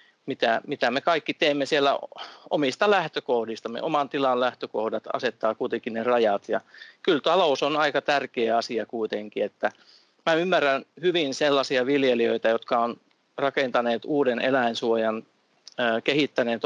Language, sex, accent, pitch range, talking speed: Finnish, male, native, 120-150 Hz, 125 wpm